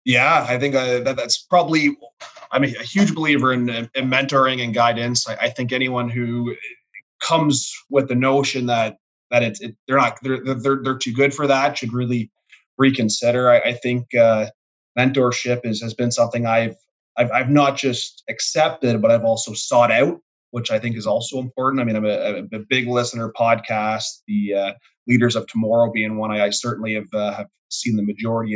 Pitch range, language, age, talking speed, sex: 110-130 Hz, English, 20-39, 195 wpm, male